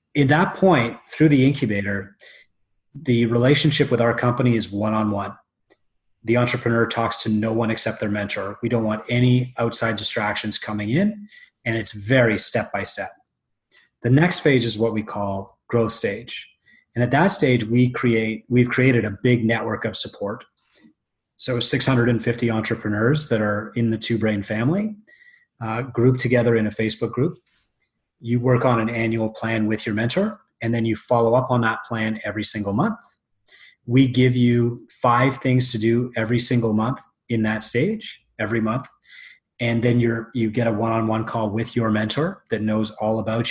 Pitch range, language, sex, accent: 110-125 Hz, English, male, American